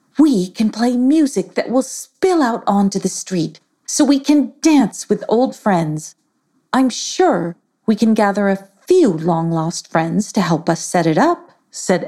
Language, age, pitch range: English, 40-59, 170-265 Hz